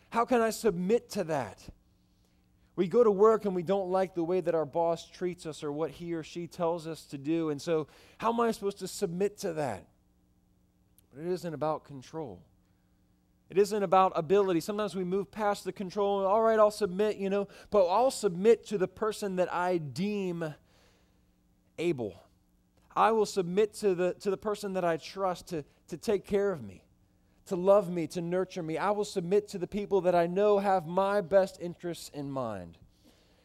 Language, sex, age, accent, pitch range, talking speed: English, male, 20-39, American, 125-195 Hz, 195 wpm